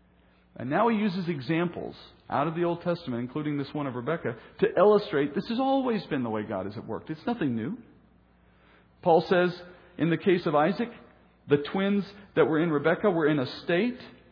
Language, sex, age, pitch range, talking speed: English, male, 50-69, 120-185 Hz, 195 wpm